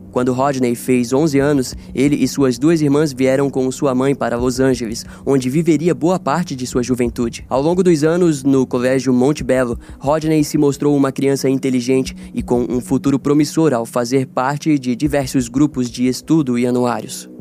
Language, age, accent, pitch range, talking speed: Portuguese, 20-39, Brazilian, 125-150 Hz, 180 wpm